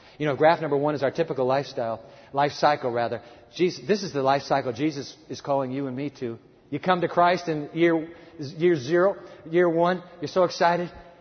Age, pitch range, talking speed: 50-69, 150-195 Hz, 205 wpm